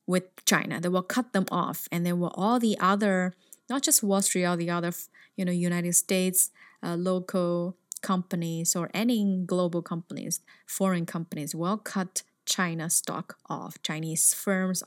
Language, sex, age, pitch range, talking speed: English, female, 20-39, 175-210 Hz, 160 wpm